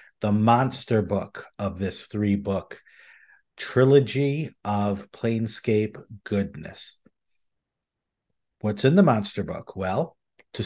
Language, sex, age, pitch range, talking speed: English, male, 50-69, 105-130 Hz, 95 wpm